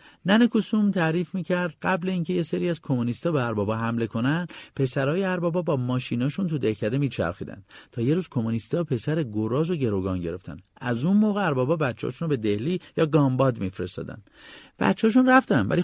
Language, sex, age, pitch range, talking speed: Persian, male, 50-69, 120-185 Hz, 165 wpm